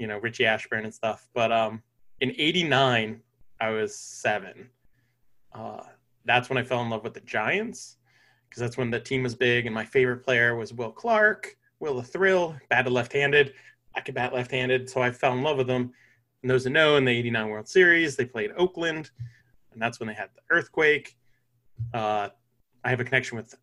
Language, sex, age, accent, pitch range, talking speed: English, male, 20-39, American, 115-130 Hz, 200 wpm